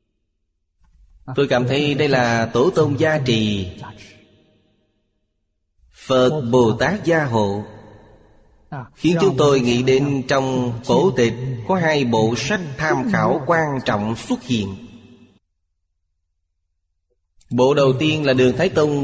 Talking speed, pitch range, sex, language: 125 wpm, 110-140 Hz, male, Vietnamese